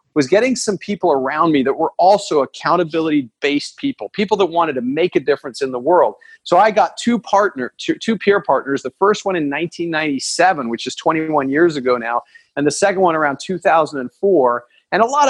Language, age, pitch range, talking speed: English, 40-59, 145-205 Hz, 195 wpm